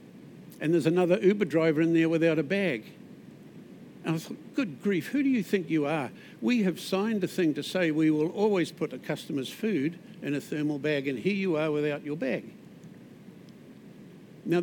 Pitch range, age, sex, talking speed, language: 150-190 Hz, 60-79, male, 195 wpm, English